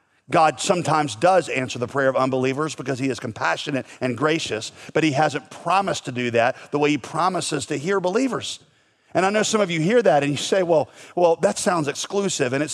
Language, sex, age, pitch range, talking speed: English, male, 40-59, 140-185 Hz, 215 wpm